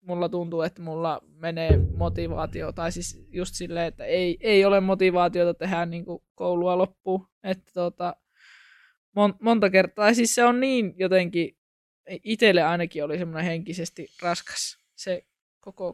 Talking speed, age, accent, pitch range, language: 145 wpm, 20-39, native, 175-205 Hz, Finnish